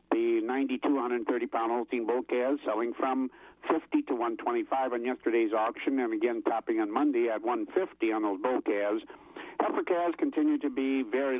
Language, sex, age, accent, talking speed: English, male, 60-79, American, 160 wpm